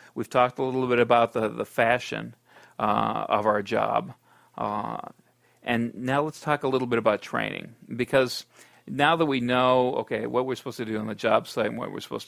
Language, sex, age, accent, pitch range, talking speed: English, male, 40-59, American, 110-125 Hz, 205 wpm